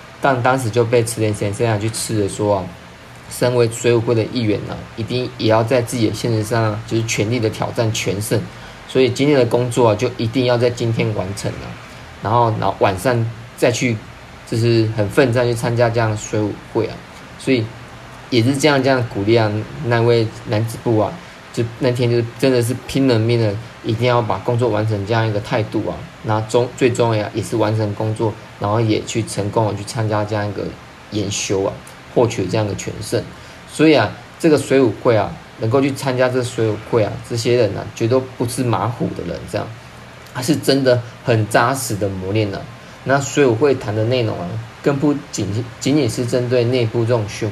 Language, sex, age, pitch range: Chinese, male, 20-39, 110-125 Hz